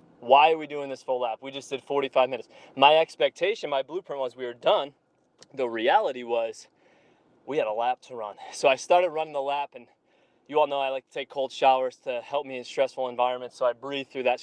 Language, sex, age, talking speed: English, male, 20-39, 235 wpm